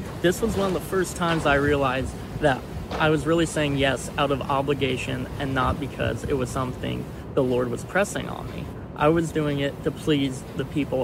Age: 20-39